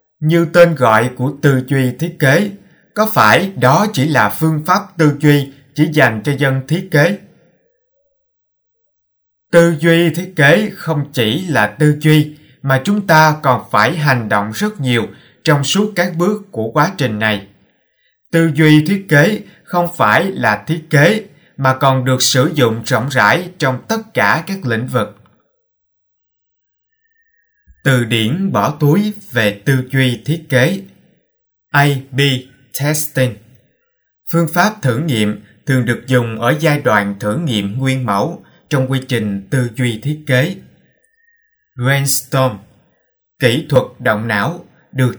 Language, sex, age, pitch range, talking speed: Vietnamese, male, 20-39, 125-170 Hz, 145 wpm